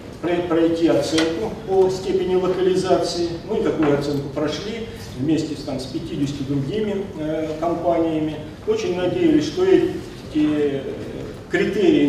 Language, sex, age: Russian, male, 40-59